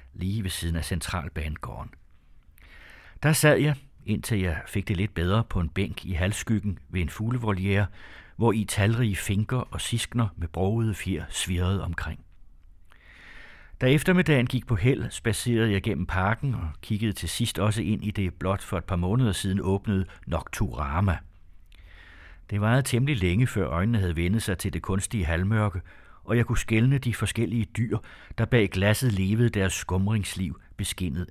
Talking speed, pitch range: 165 wpm, 90-110 Hz